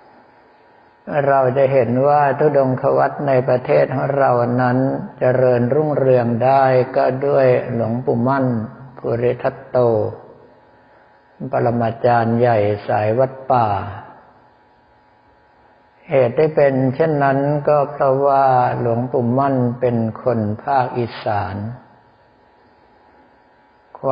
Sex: male